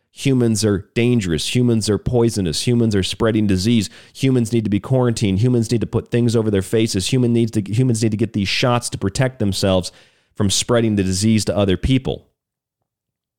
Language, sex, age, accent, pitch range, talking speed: English, male, 40-59, American, 90-110 Hz, 175 wpm